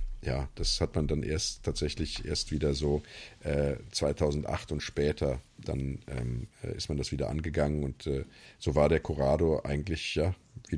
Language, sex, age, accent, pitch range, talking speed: German, male, 40-59, German, 80-105 Hz, 165 wpm